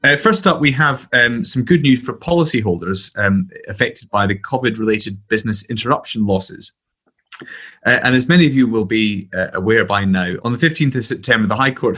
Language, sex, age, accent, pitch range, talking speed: English, male, 30-49, British, 95-125 Hz, 195 wpm